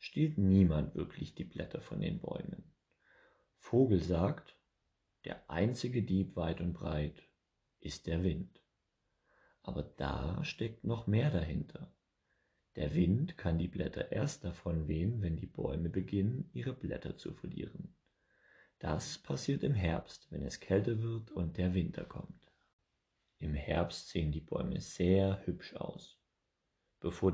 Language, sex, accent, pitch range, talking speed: German, male, German, 85-115 Hz, 135 wpm